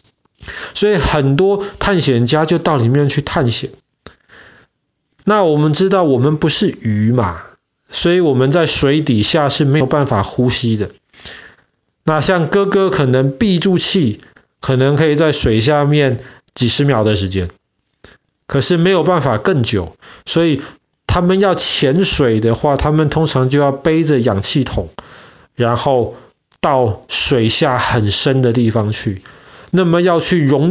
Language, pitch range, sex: Chinese, 120-165 Hz, male